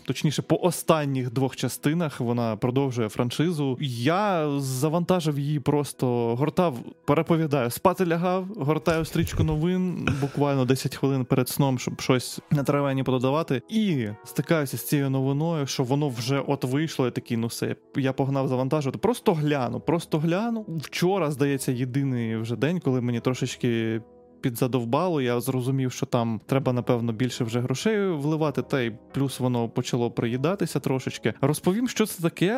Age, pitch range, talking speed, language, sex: 20-39, 125-165 Hz, 145 wpm, Ukrainian, male